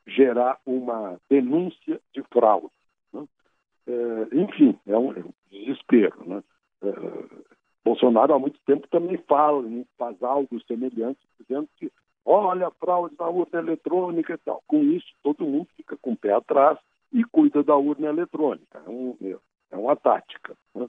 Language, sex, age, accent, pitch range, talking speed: Portuguese, male, 60-79, Brazilian, 115-160 Hz, 160 wpm